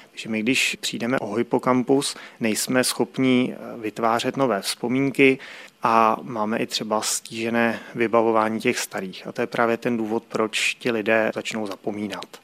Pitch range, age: 110-125 Hz, 30-49